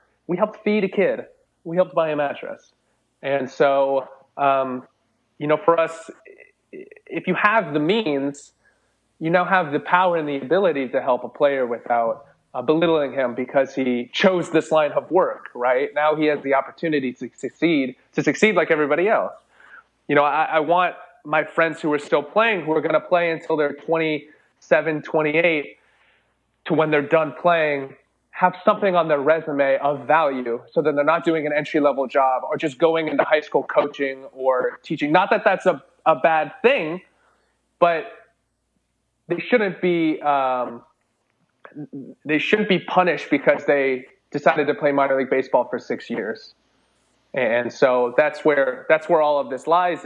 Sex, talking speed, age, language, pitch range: male, 175 wpm, 30-49, English, 135-165 Hz